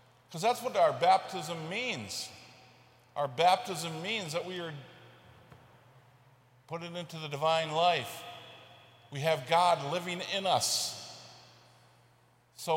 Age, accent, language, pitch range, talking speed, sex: 50-69, American, English, 130-175 Hz, 115 wpm, male